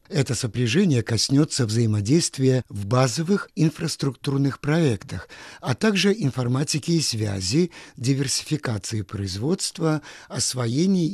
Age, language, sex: 50-69, Russian, male